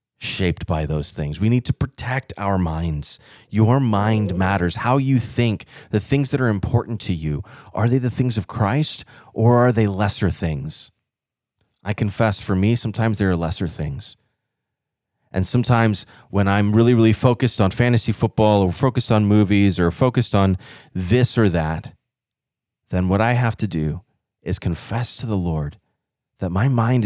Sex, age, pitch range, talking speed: male, 30-49, 95-120 Hz, 170 wpm